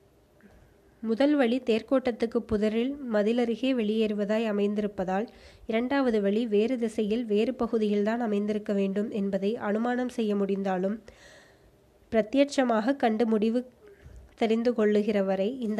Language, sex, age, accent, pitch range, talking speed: Tamil, female, 20-39, native, 205-230 Hz, 100 wpm